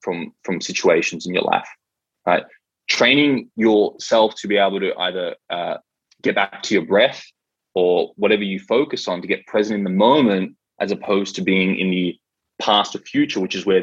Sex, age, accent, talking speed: male, 20-39, Australian, 185 wpm